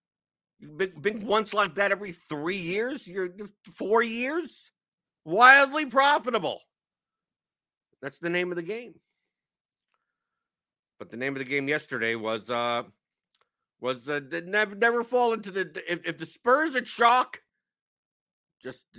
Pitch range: 130-200 Hz